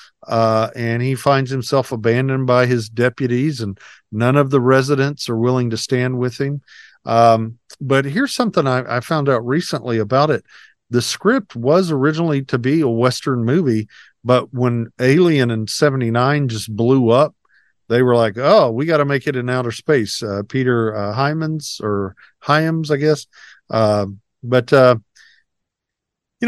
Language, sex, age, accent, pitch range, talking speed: English, male, 50-69, American, 115-145 Hz, 165 wpm